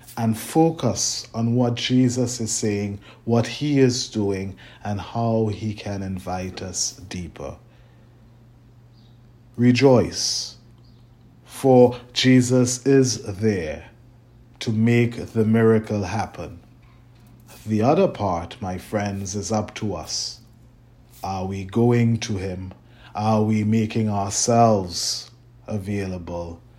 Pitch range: 100-120 Hz